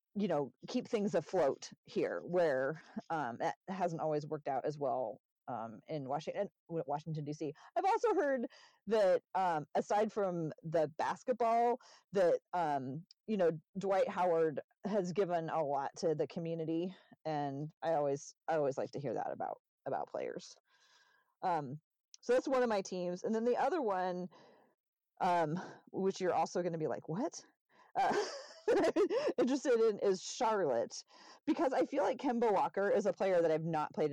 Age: 30-49